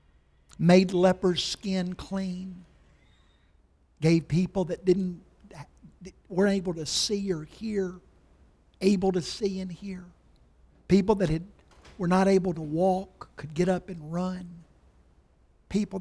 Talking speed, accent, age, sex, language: 125 wpm, American, 60-79, male, English